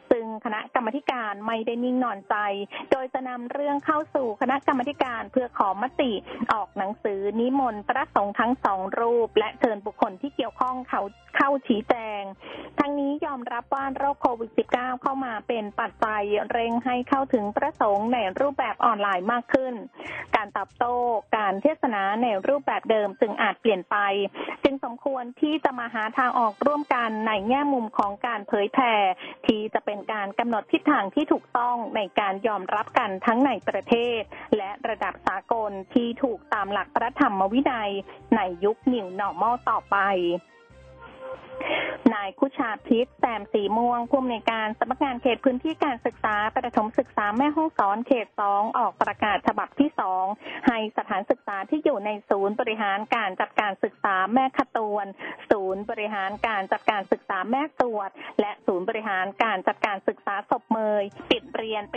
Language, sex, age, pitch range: Thai, female, 20-39, 210-275 Hz